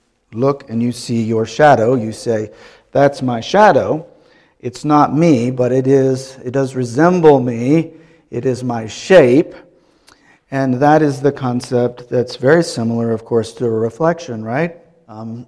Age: 50-69